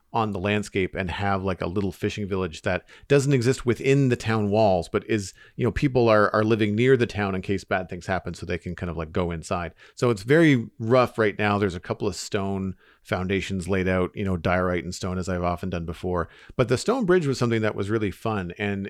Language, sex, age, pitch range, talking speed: English, male, 40-59, 95-115 Hz, 240 wpm